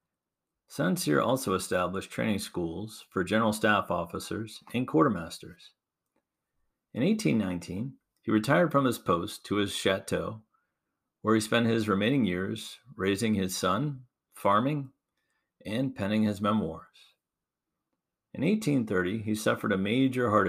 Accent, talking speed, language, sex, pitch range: American, 125 wpm, English, male, 95-115 Hz